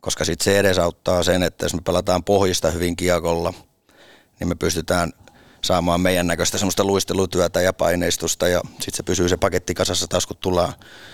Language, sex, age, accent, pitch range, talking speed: Finnish, male, 30-49, native, 90-105 Hz, 180 wpm